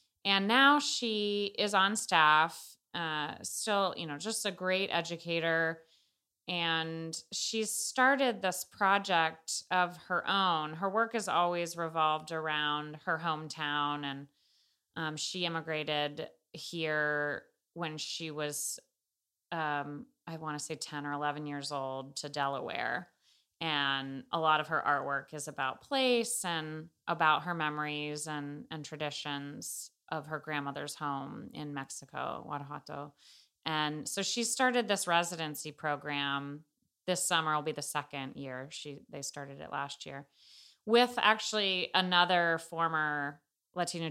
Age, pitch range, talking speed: 30-49, 145-180 Hz, 130 wpm